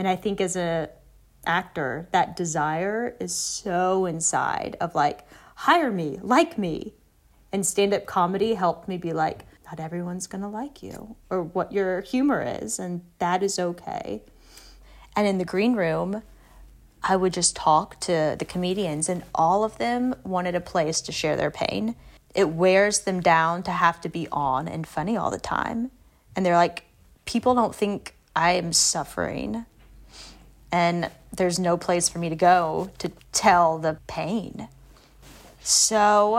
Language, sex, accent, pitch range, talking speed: English, female, American, 170-215 Hz, 160 wpm